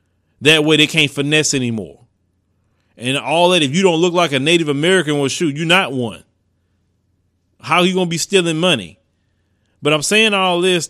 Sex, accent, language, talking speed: male, American, English, 195 wpm